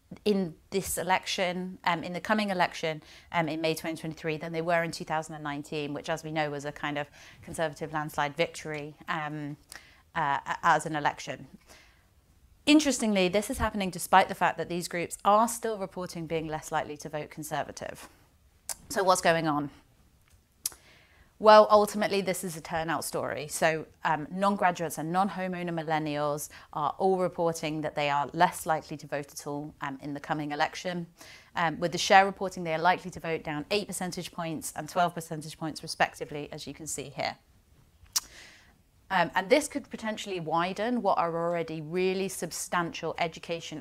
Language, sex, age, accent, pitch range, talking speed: English, female, 30-49, British, 155-185 Hz, 165 wpm